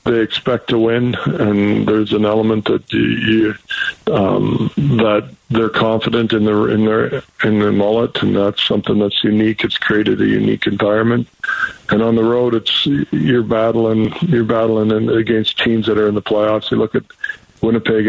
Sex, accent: male, American